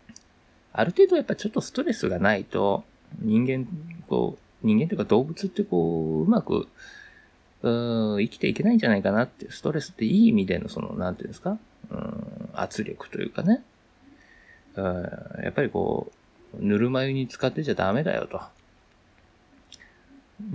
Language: Japanese